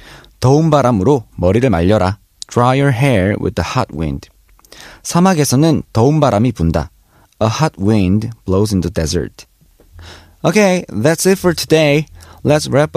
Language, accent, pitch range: Korean, native, 90-135 Hz